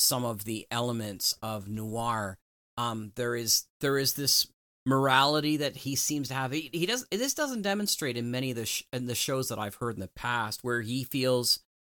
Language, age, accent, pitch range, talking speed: English, 40-59, American, 110-135 Hz, 205 wpm